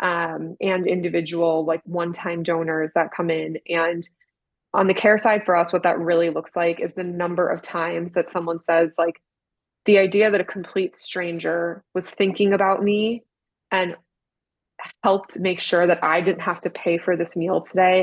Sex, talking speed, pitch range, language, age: female, 180 wpm, 170-185 Hz, English, 20-39